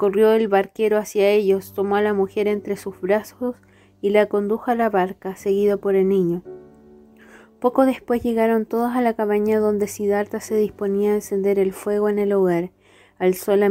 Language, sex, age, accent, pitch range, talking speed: Spanish, female, 20-39, Argentinian, 190-210 Hz, 185 wpm